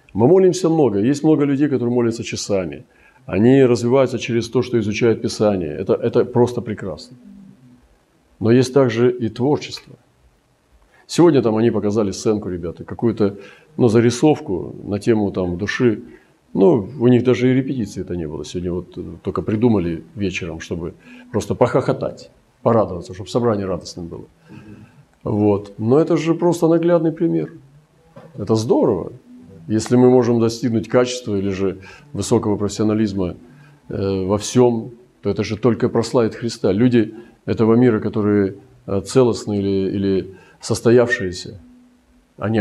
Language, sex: Russian, male